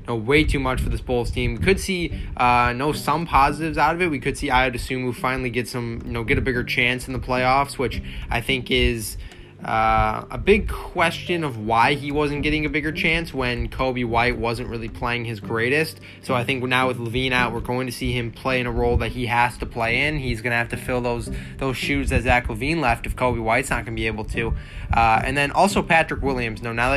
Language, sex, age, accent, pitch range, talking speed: English, male, 20-39, American, 115-135 Hz, 245 wpm